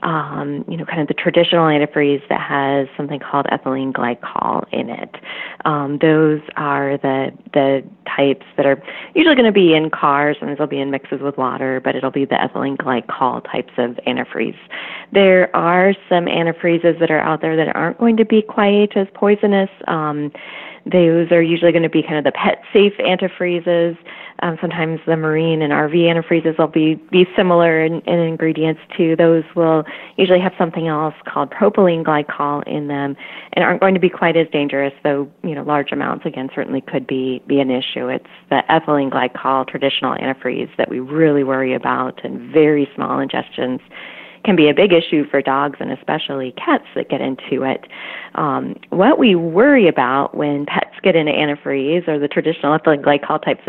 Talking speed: 180 wpm